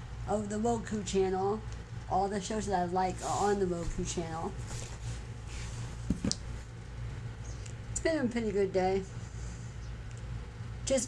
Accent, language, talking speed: American, English, 120 wpm